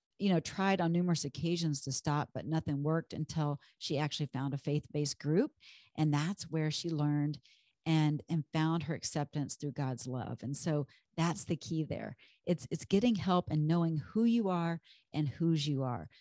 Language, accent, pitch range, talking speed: English, American, 145-180 Hz, 185 wpm